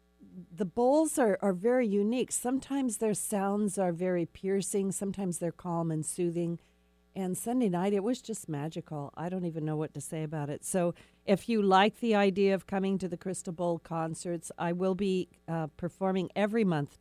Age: 50-69